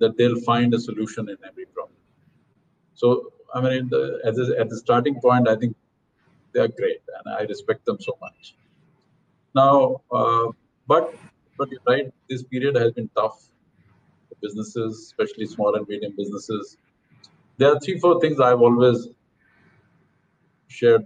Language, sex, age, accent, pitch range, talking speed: English, male, 50-69, Indian, 115-170 Hz, 150 wpm